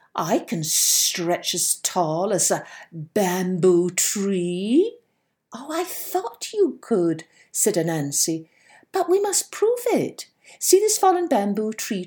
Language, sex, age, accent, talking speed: English, female, 60-79, British, 130 wpm